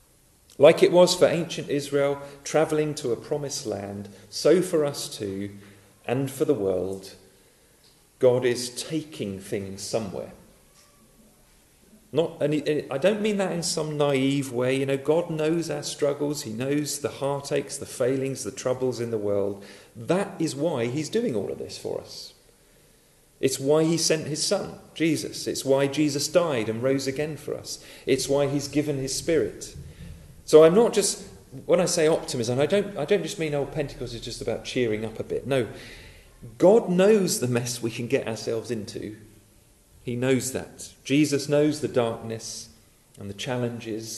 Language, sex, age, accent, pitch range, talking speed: English, male, 40-59, British, 110-150 Hz, 170 wpm